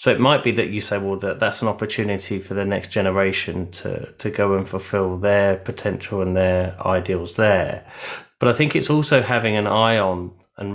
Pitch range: 95-115 Hz